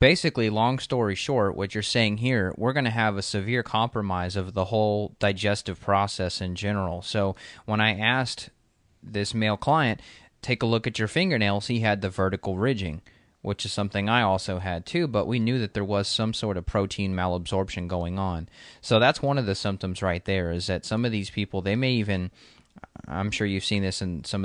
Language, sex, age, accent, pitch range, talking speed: English, male, 20-39, American, 95-115 Hz, 205 wpm